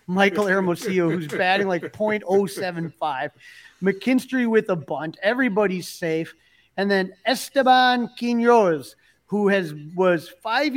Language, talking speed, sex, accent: English, 110 wpm, male, American